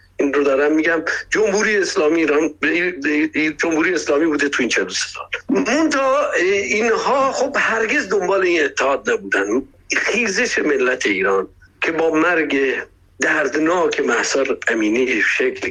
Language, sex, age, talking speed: Persian, male, 60-79, 125 wpm